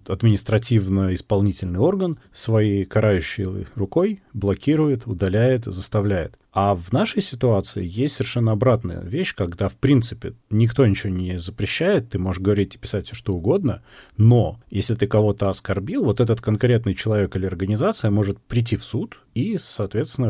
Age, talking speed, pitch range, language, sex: 30-49, 140 wpm, 95-115 Hz, Russian, male